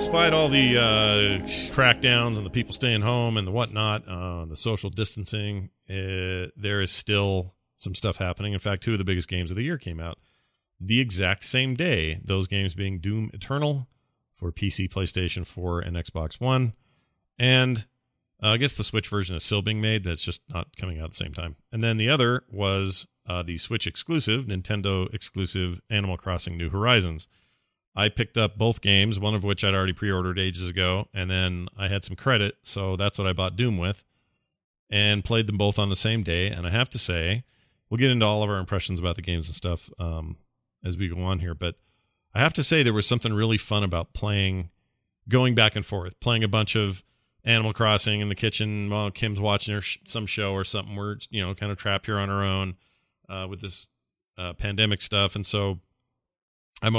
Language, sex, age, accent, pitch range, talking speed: English, male, 40-59, American, 95-110 Hz, 205 wpm